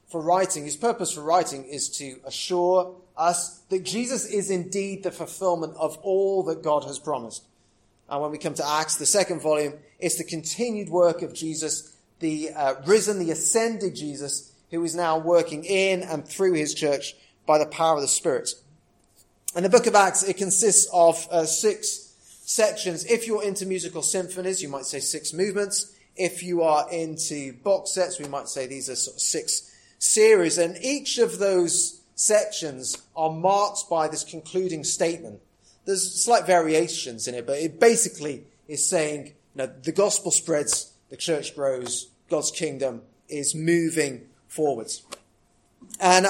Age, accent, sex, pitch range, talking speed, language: 30-49, British, male, 150-190 Hz, 165 wpm, English